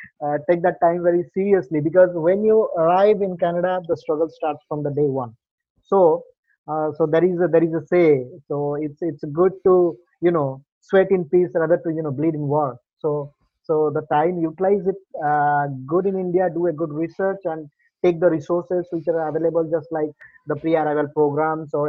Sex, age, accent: male, 20-39, Indian